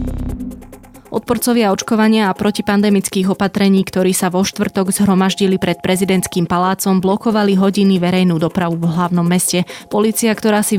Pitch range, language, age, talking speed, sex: 175-200 Hz, Slovak, 20-39, 130 wpm, female